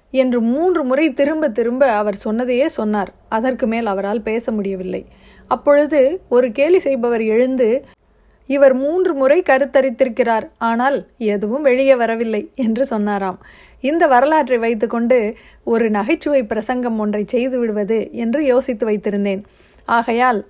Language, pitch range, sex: Tamil, 220-270 Hz, female